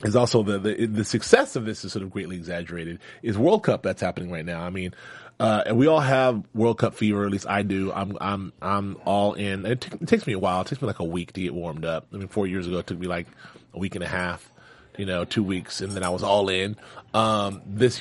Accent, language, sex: American, English, male